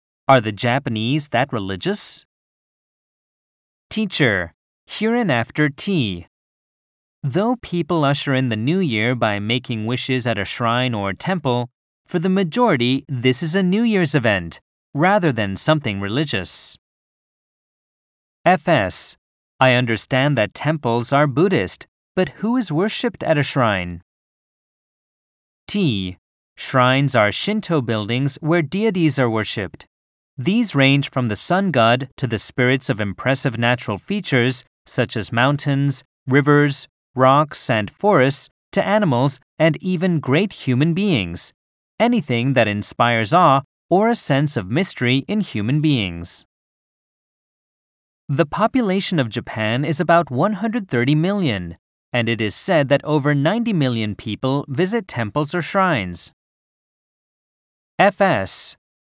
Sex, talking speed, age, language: male, 125 wpm, 30-49, English